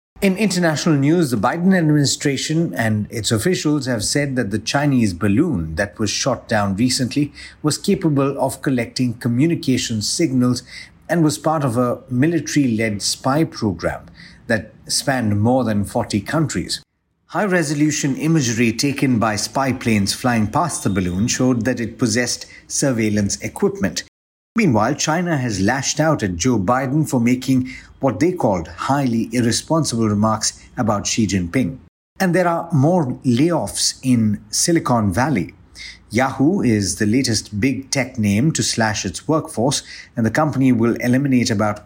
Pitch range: 110-145 Hz